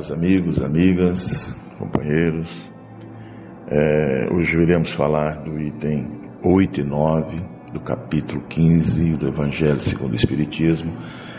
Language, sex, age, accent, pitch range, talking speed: Portuguese, male, 60-79, Brazilian, 75-90 Hz, 105 wpm